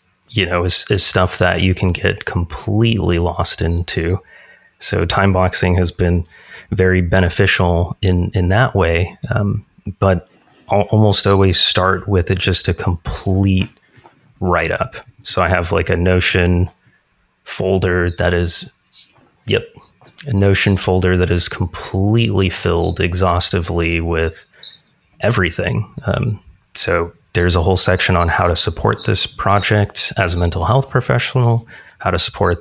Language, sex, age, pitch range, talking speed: English, male, 30-49, 90-100 Hz, 140 wpm